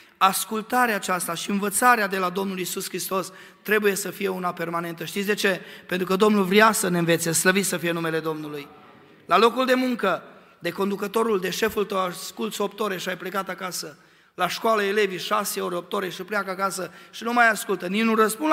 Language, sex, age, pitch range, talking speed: Romanian, male, 30-49, 190-230 Hz, 200 wpm